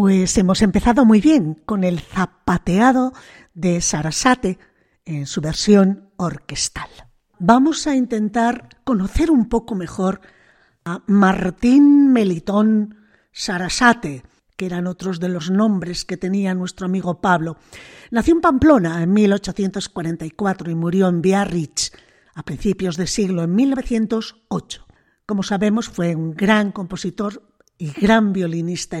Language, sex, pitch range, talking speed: Spanish, female, 180-230 Hz, 125 wpm